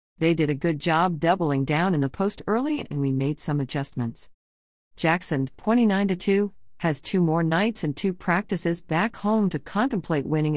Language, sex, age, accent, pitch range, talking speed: English, female, 50-69, American, 140-190 Hz, 170 wpm